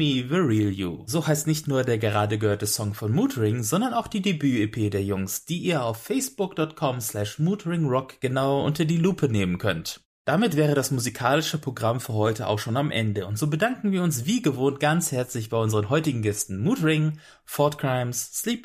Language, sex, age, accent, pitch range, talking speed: English, male, 30-49, German, 105-155 Hz, 180 wpm